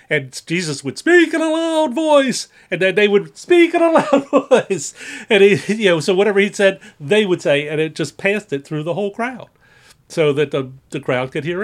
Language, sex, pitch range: English, male, 120-165 Hz